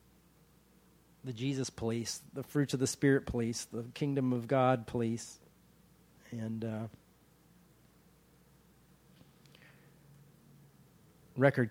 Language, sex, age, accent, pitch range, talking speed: English, male, 40-59, American, 115-145 Hz, 85 wpm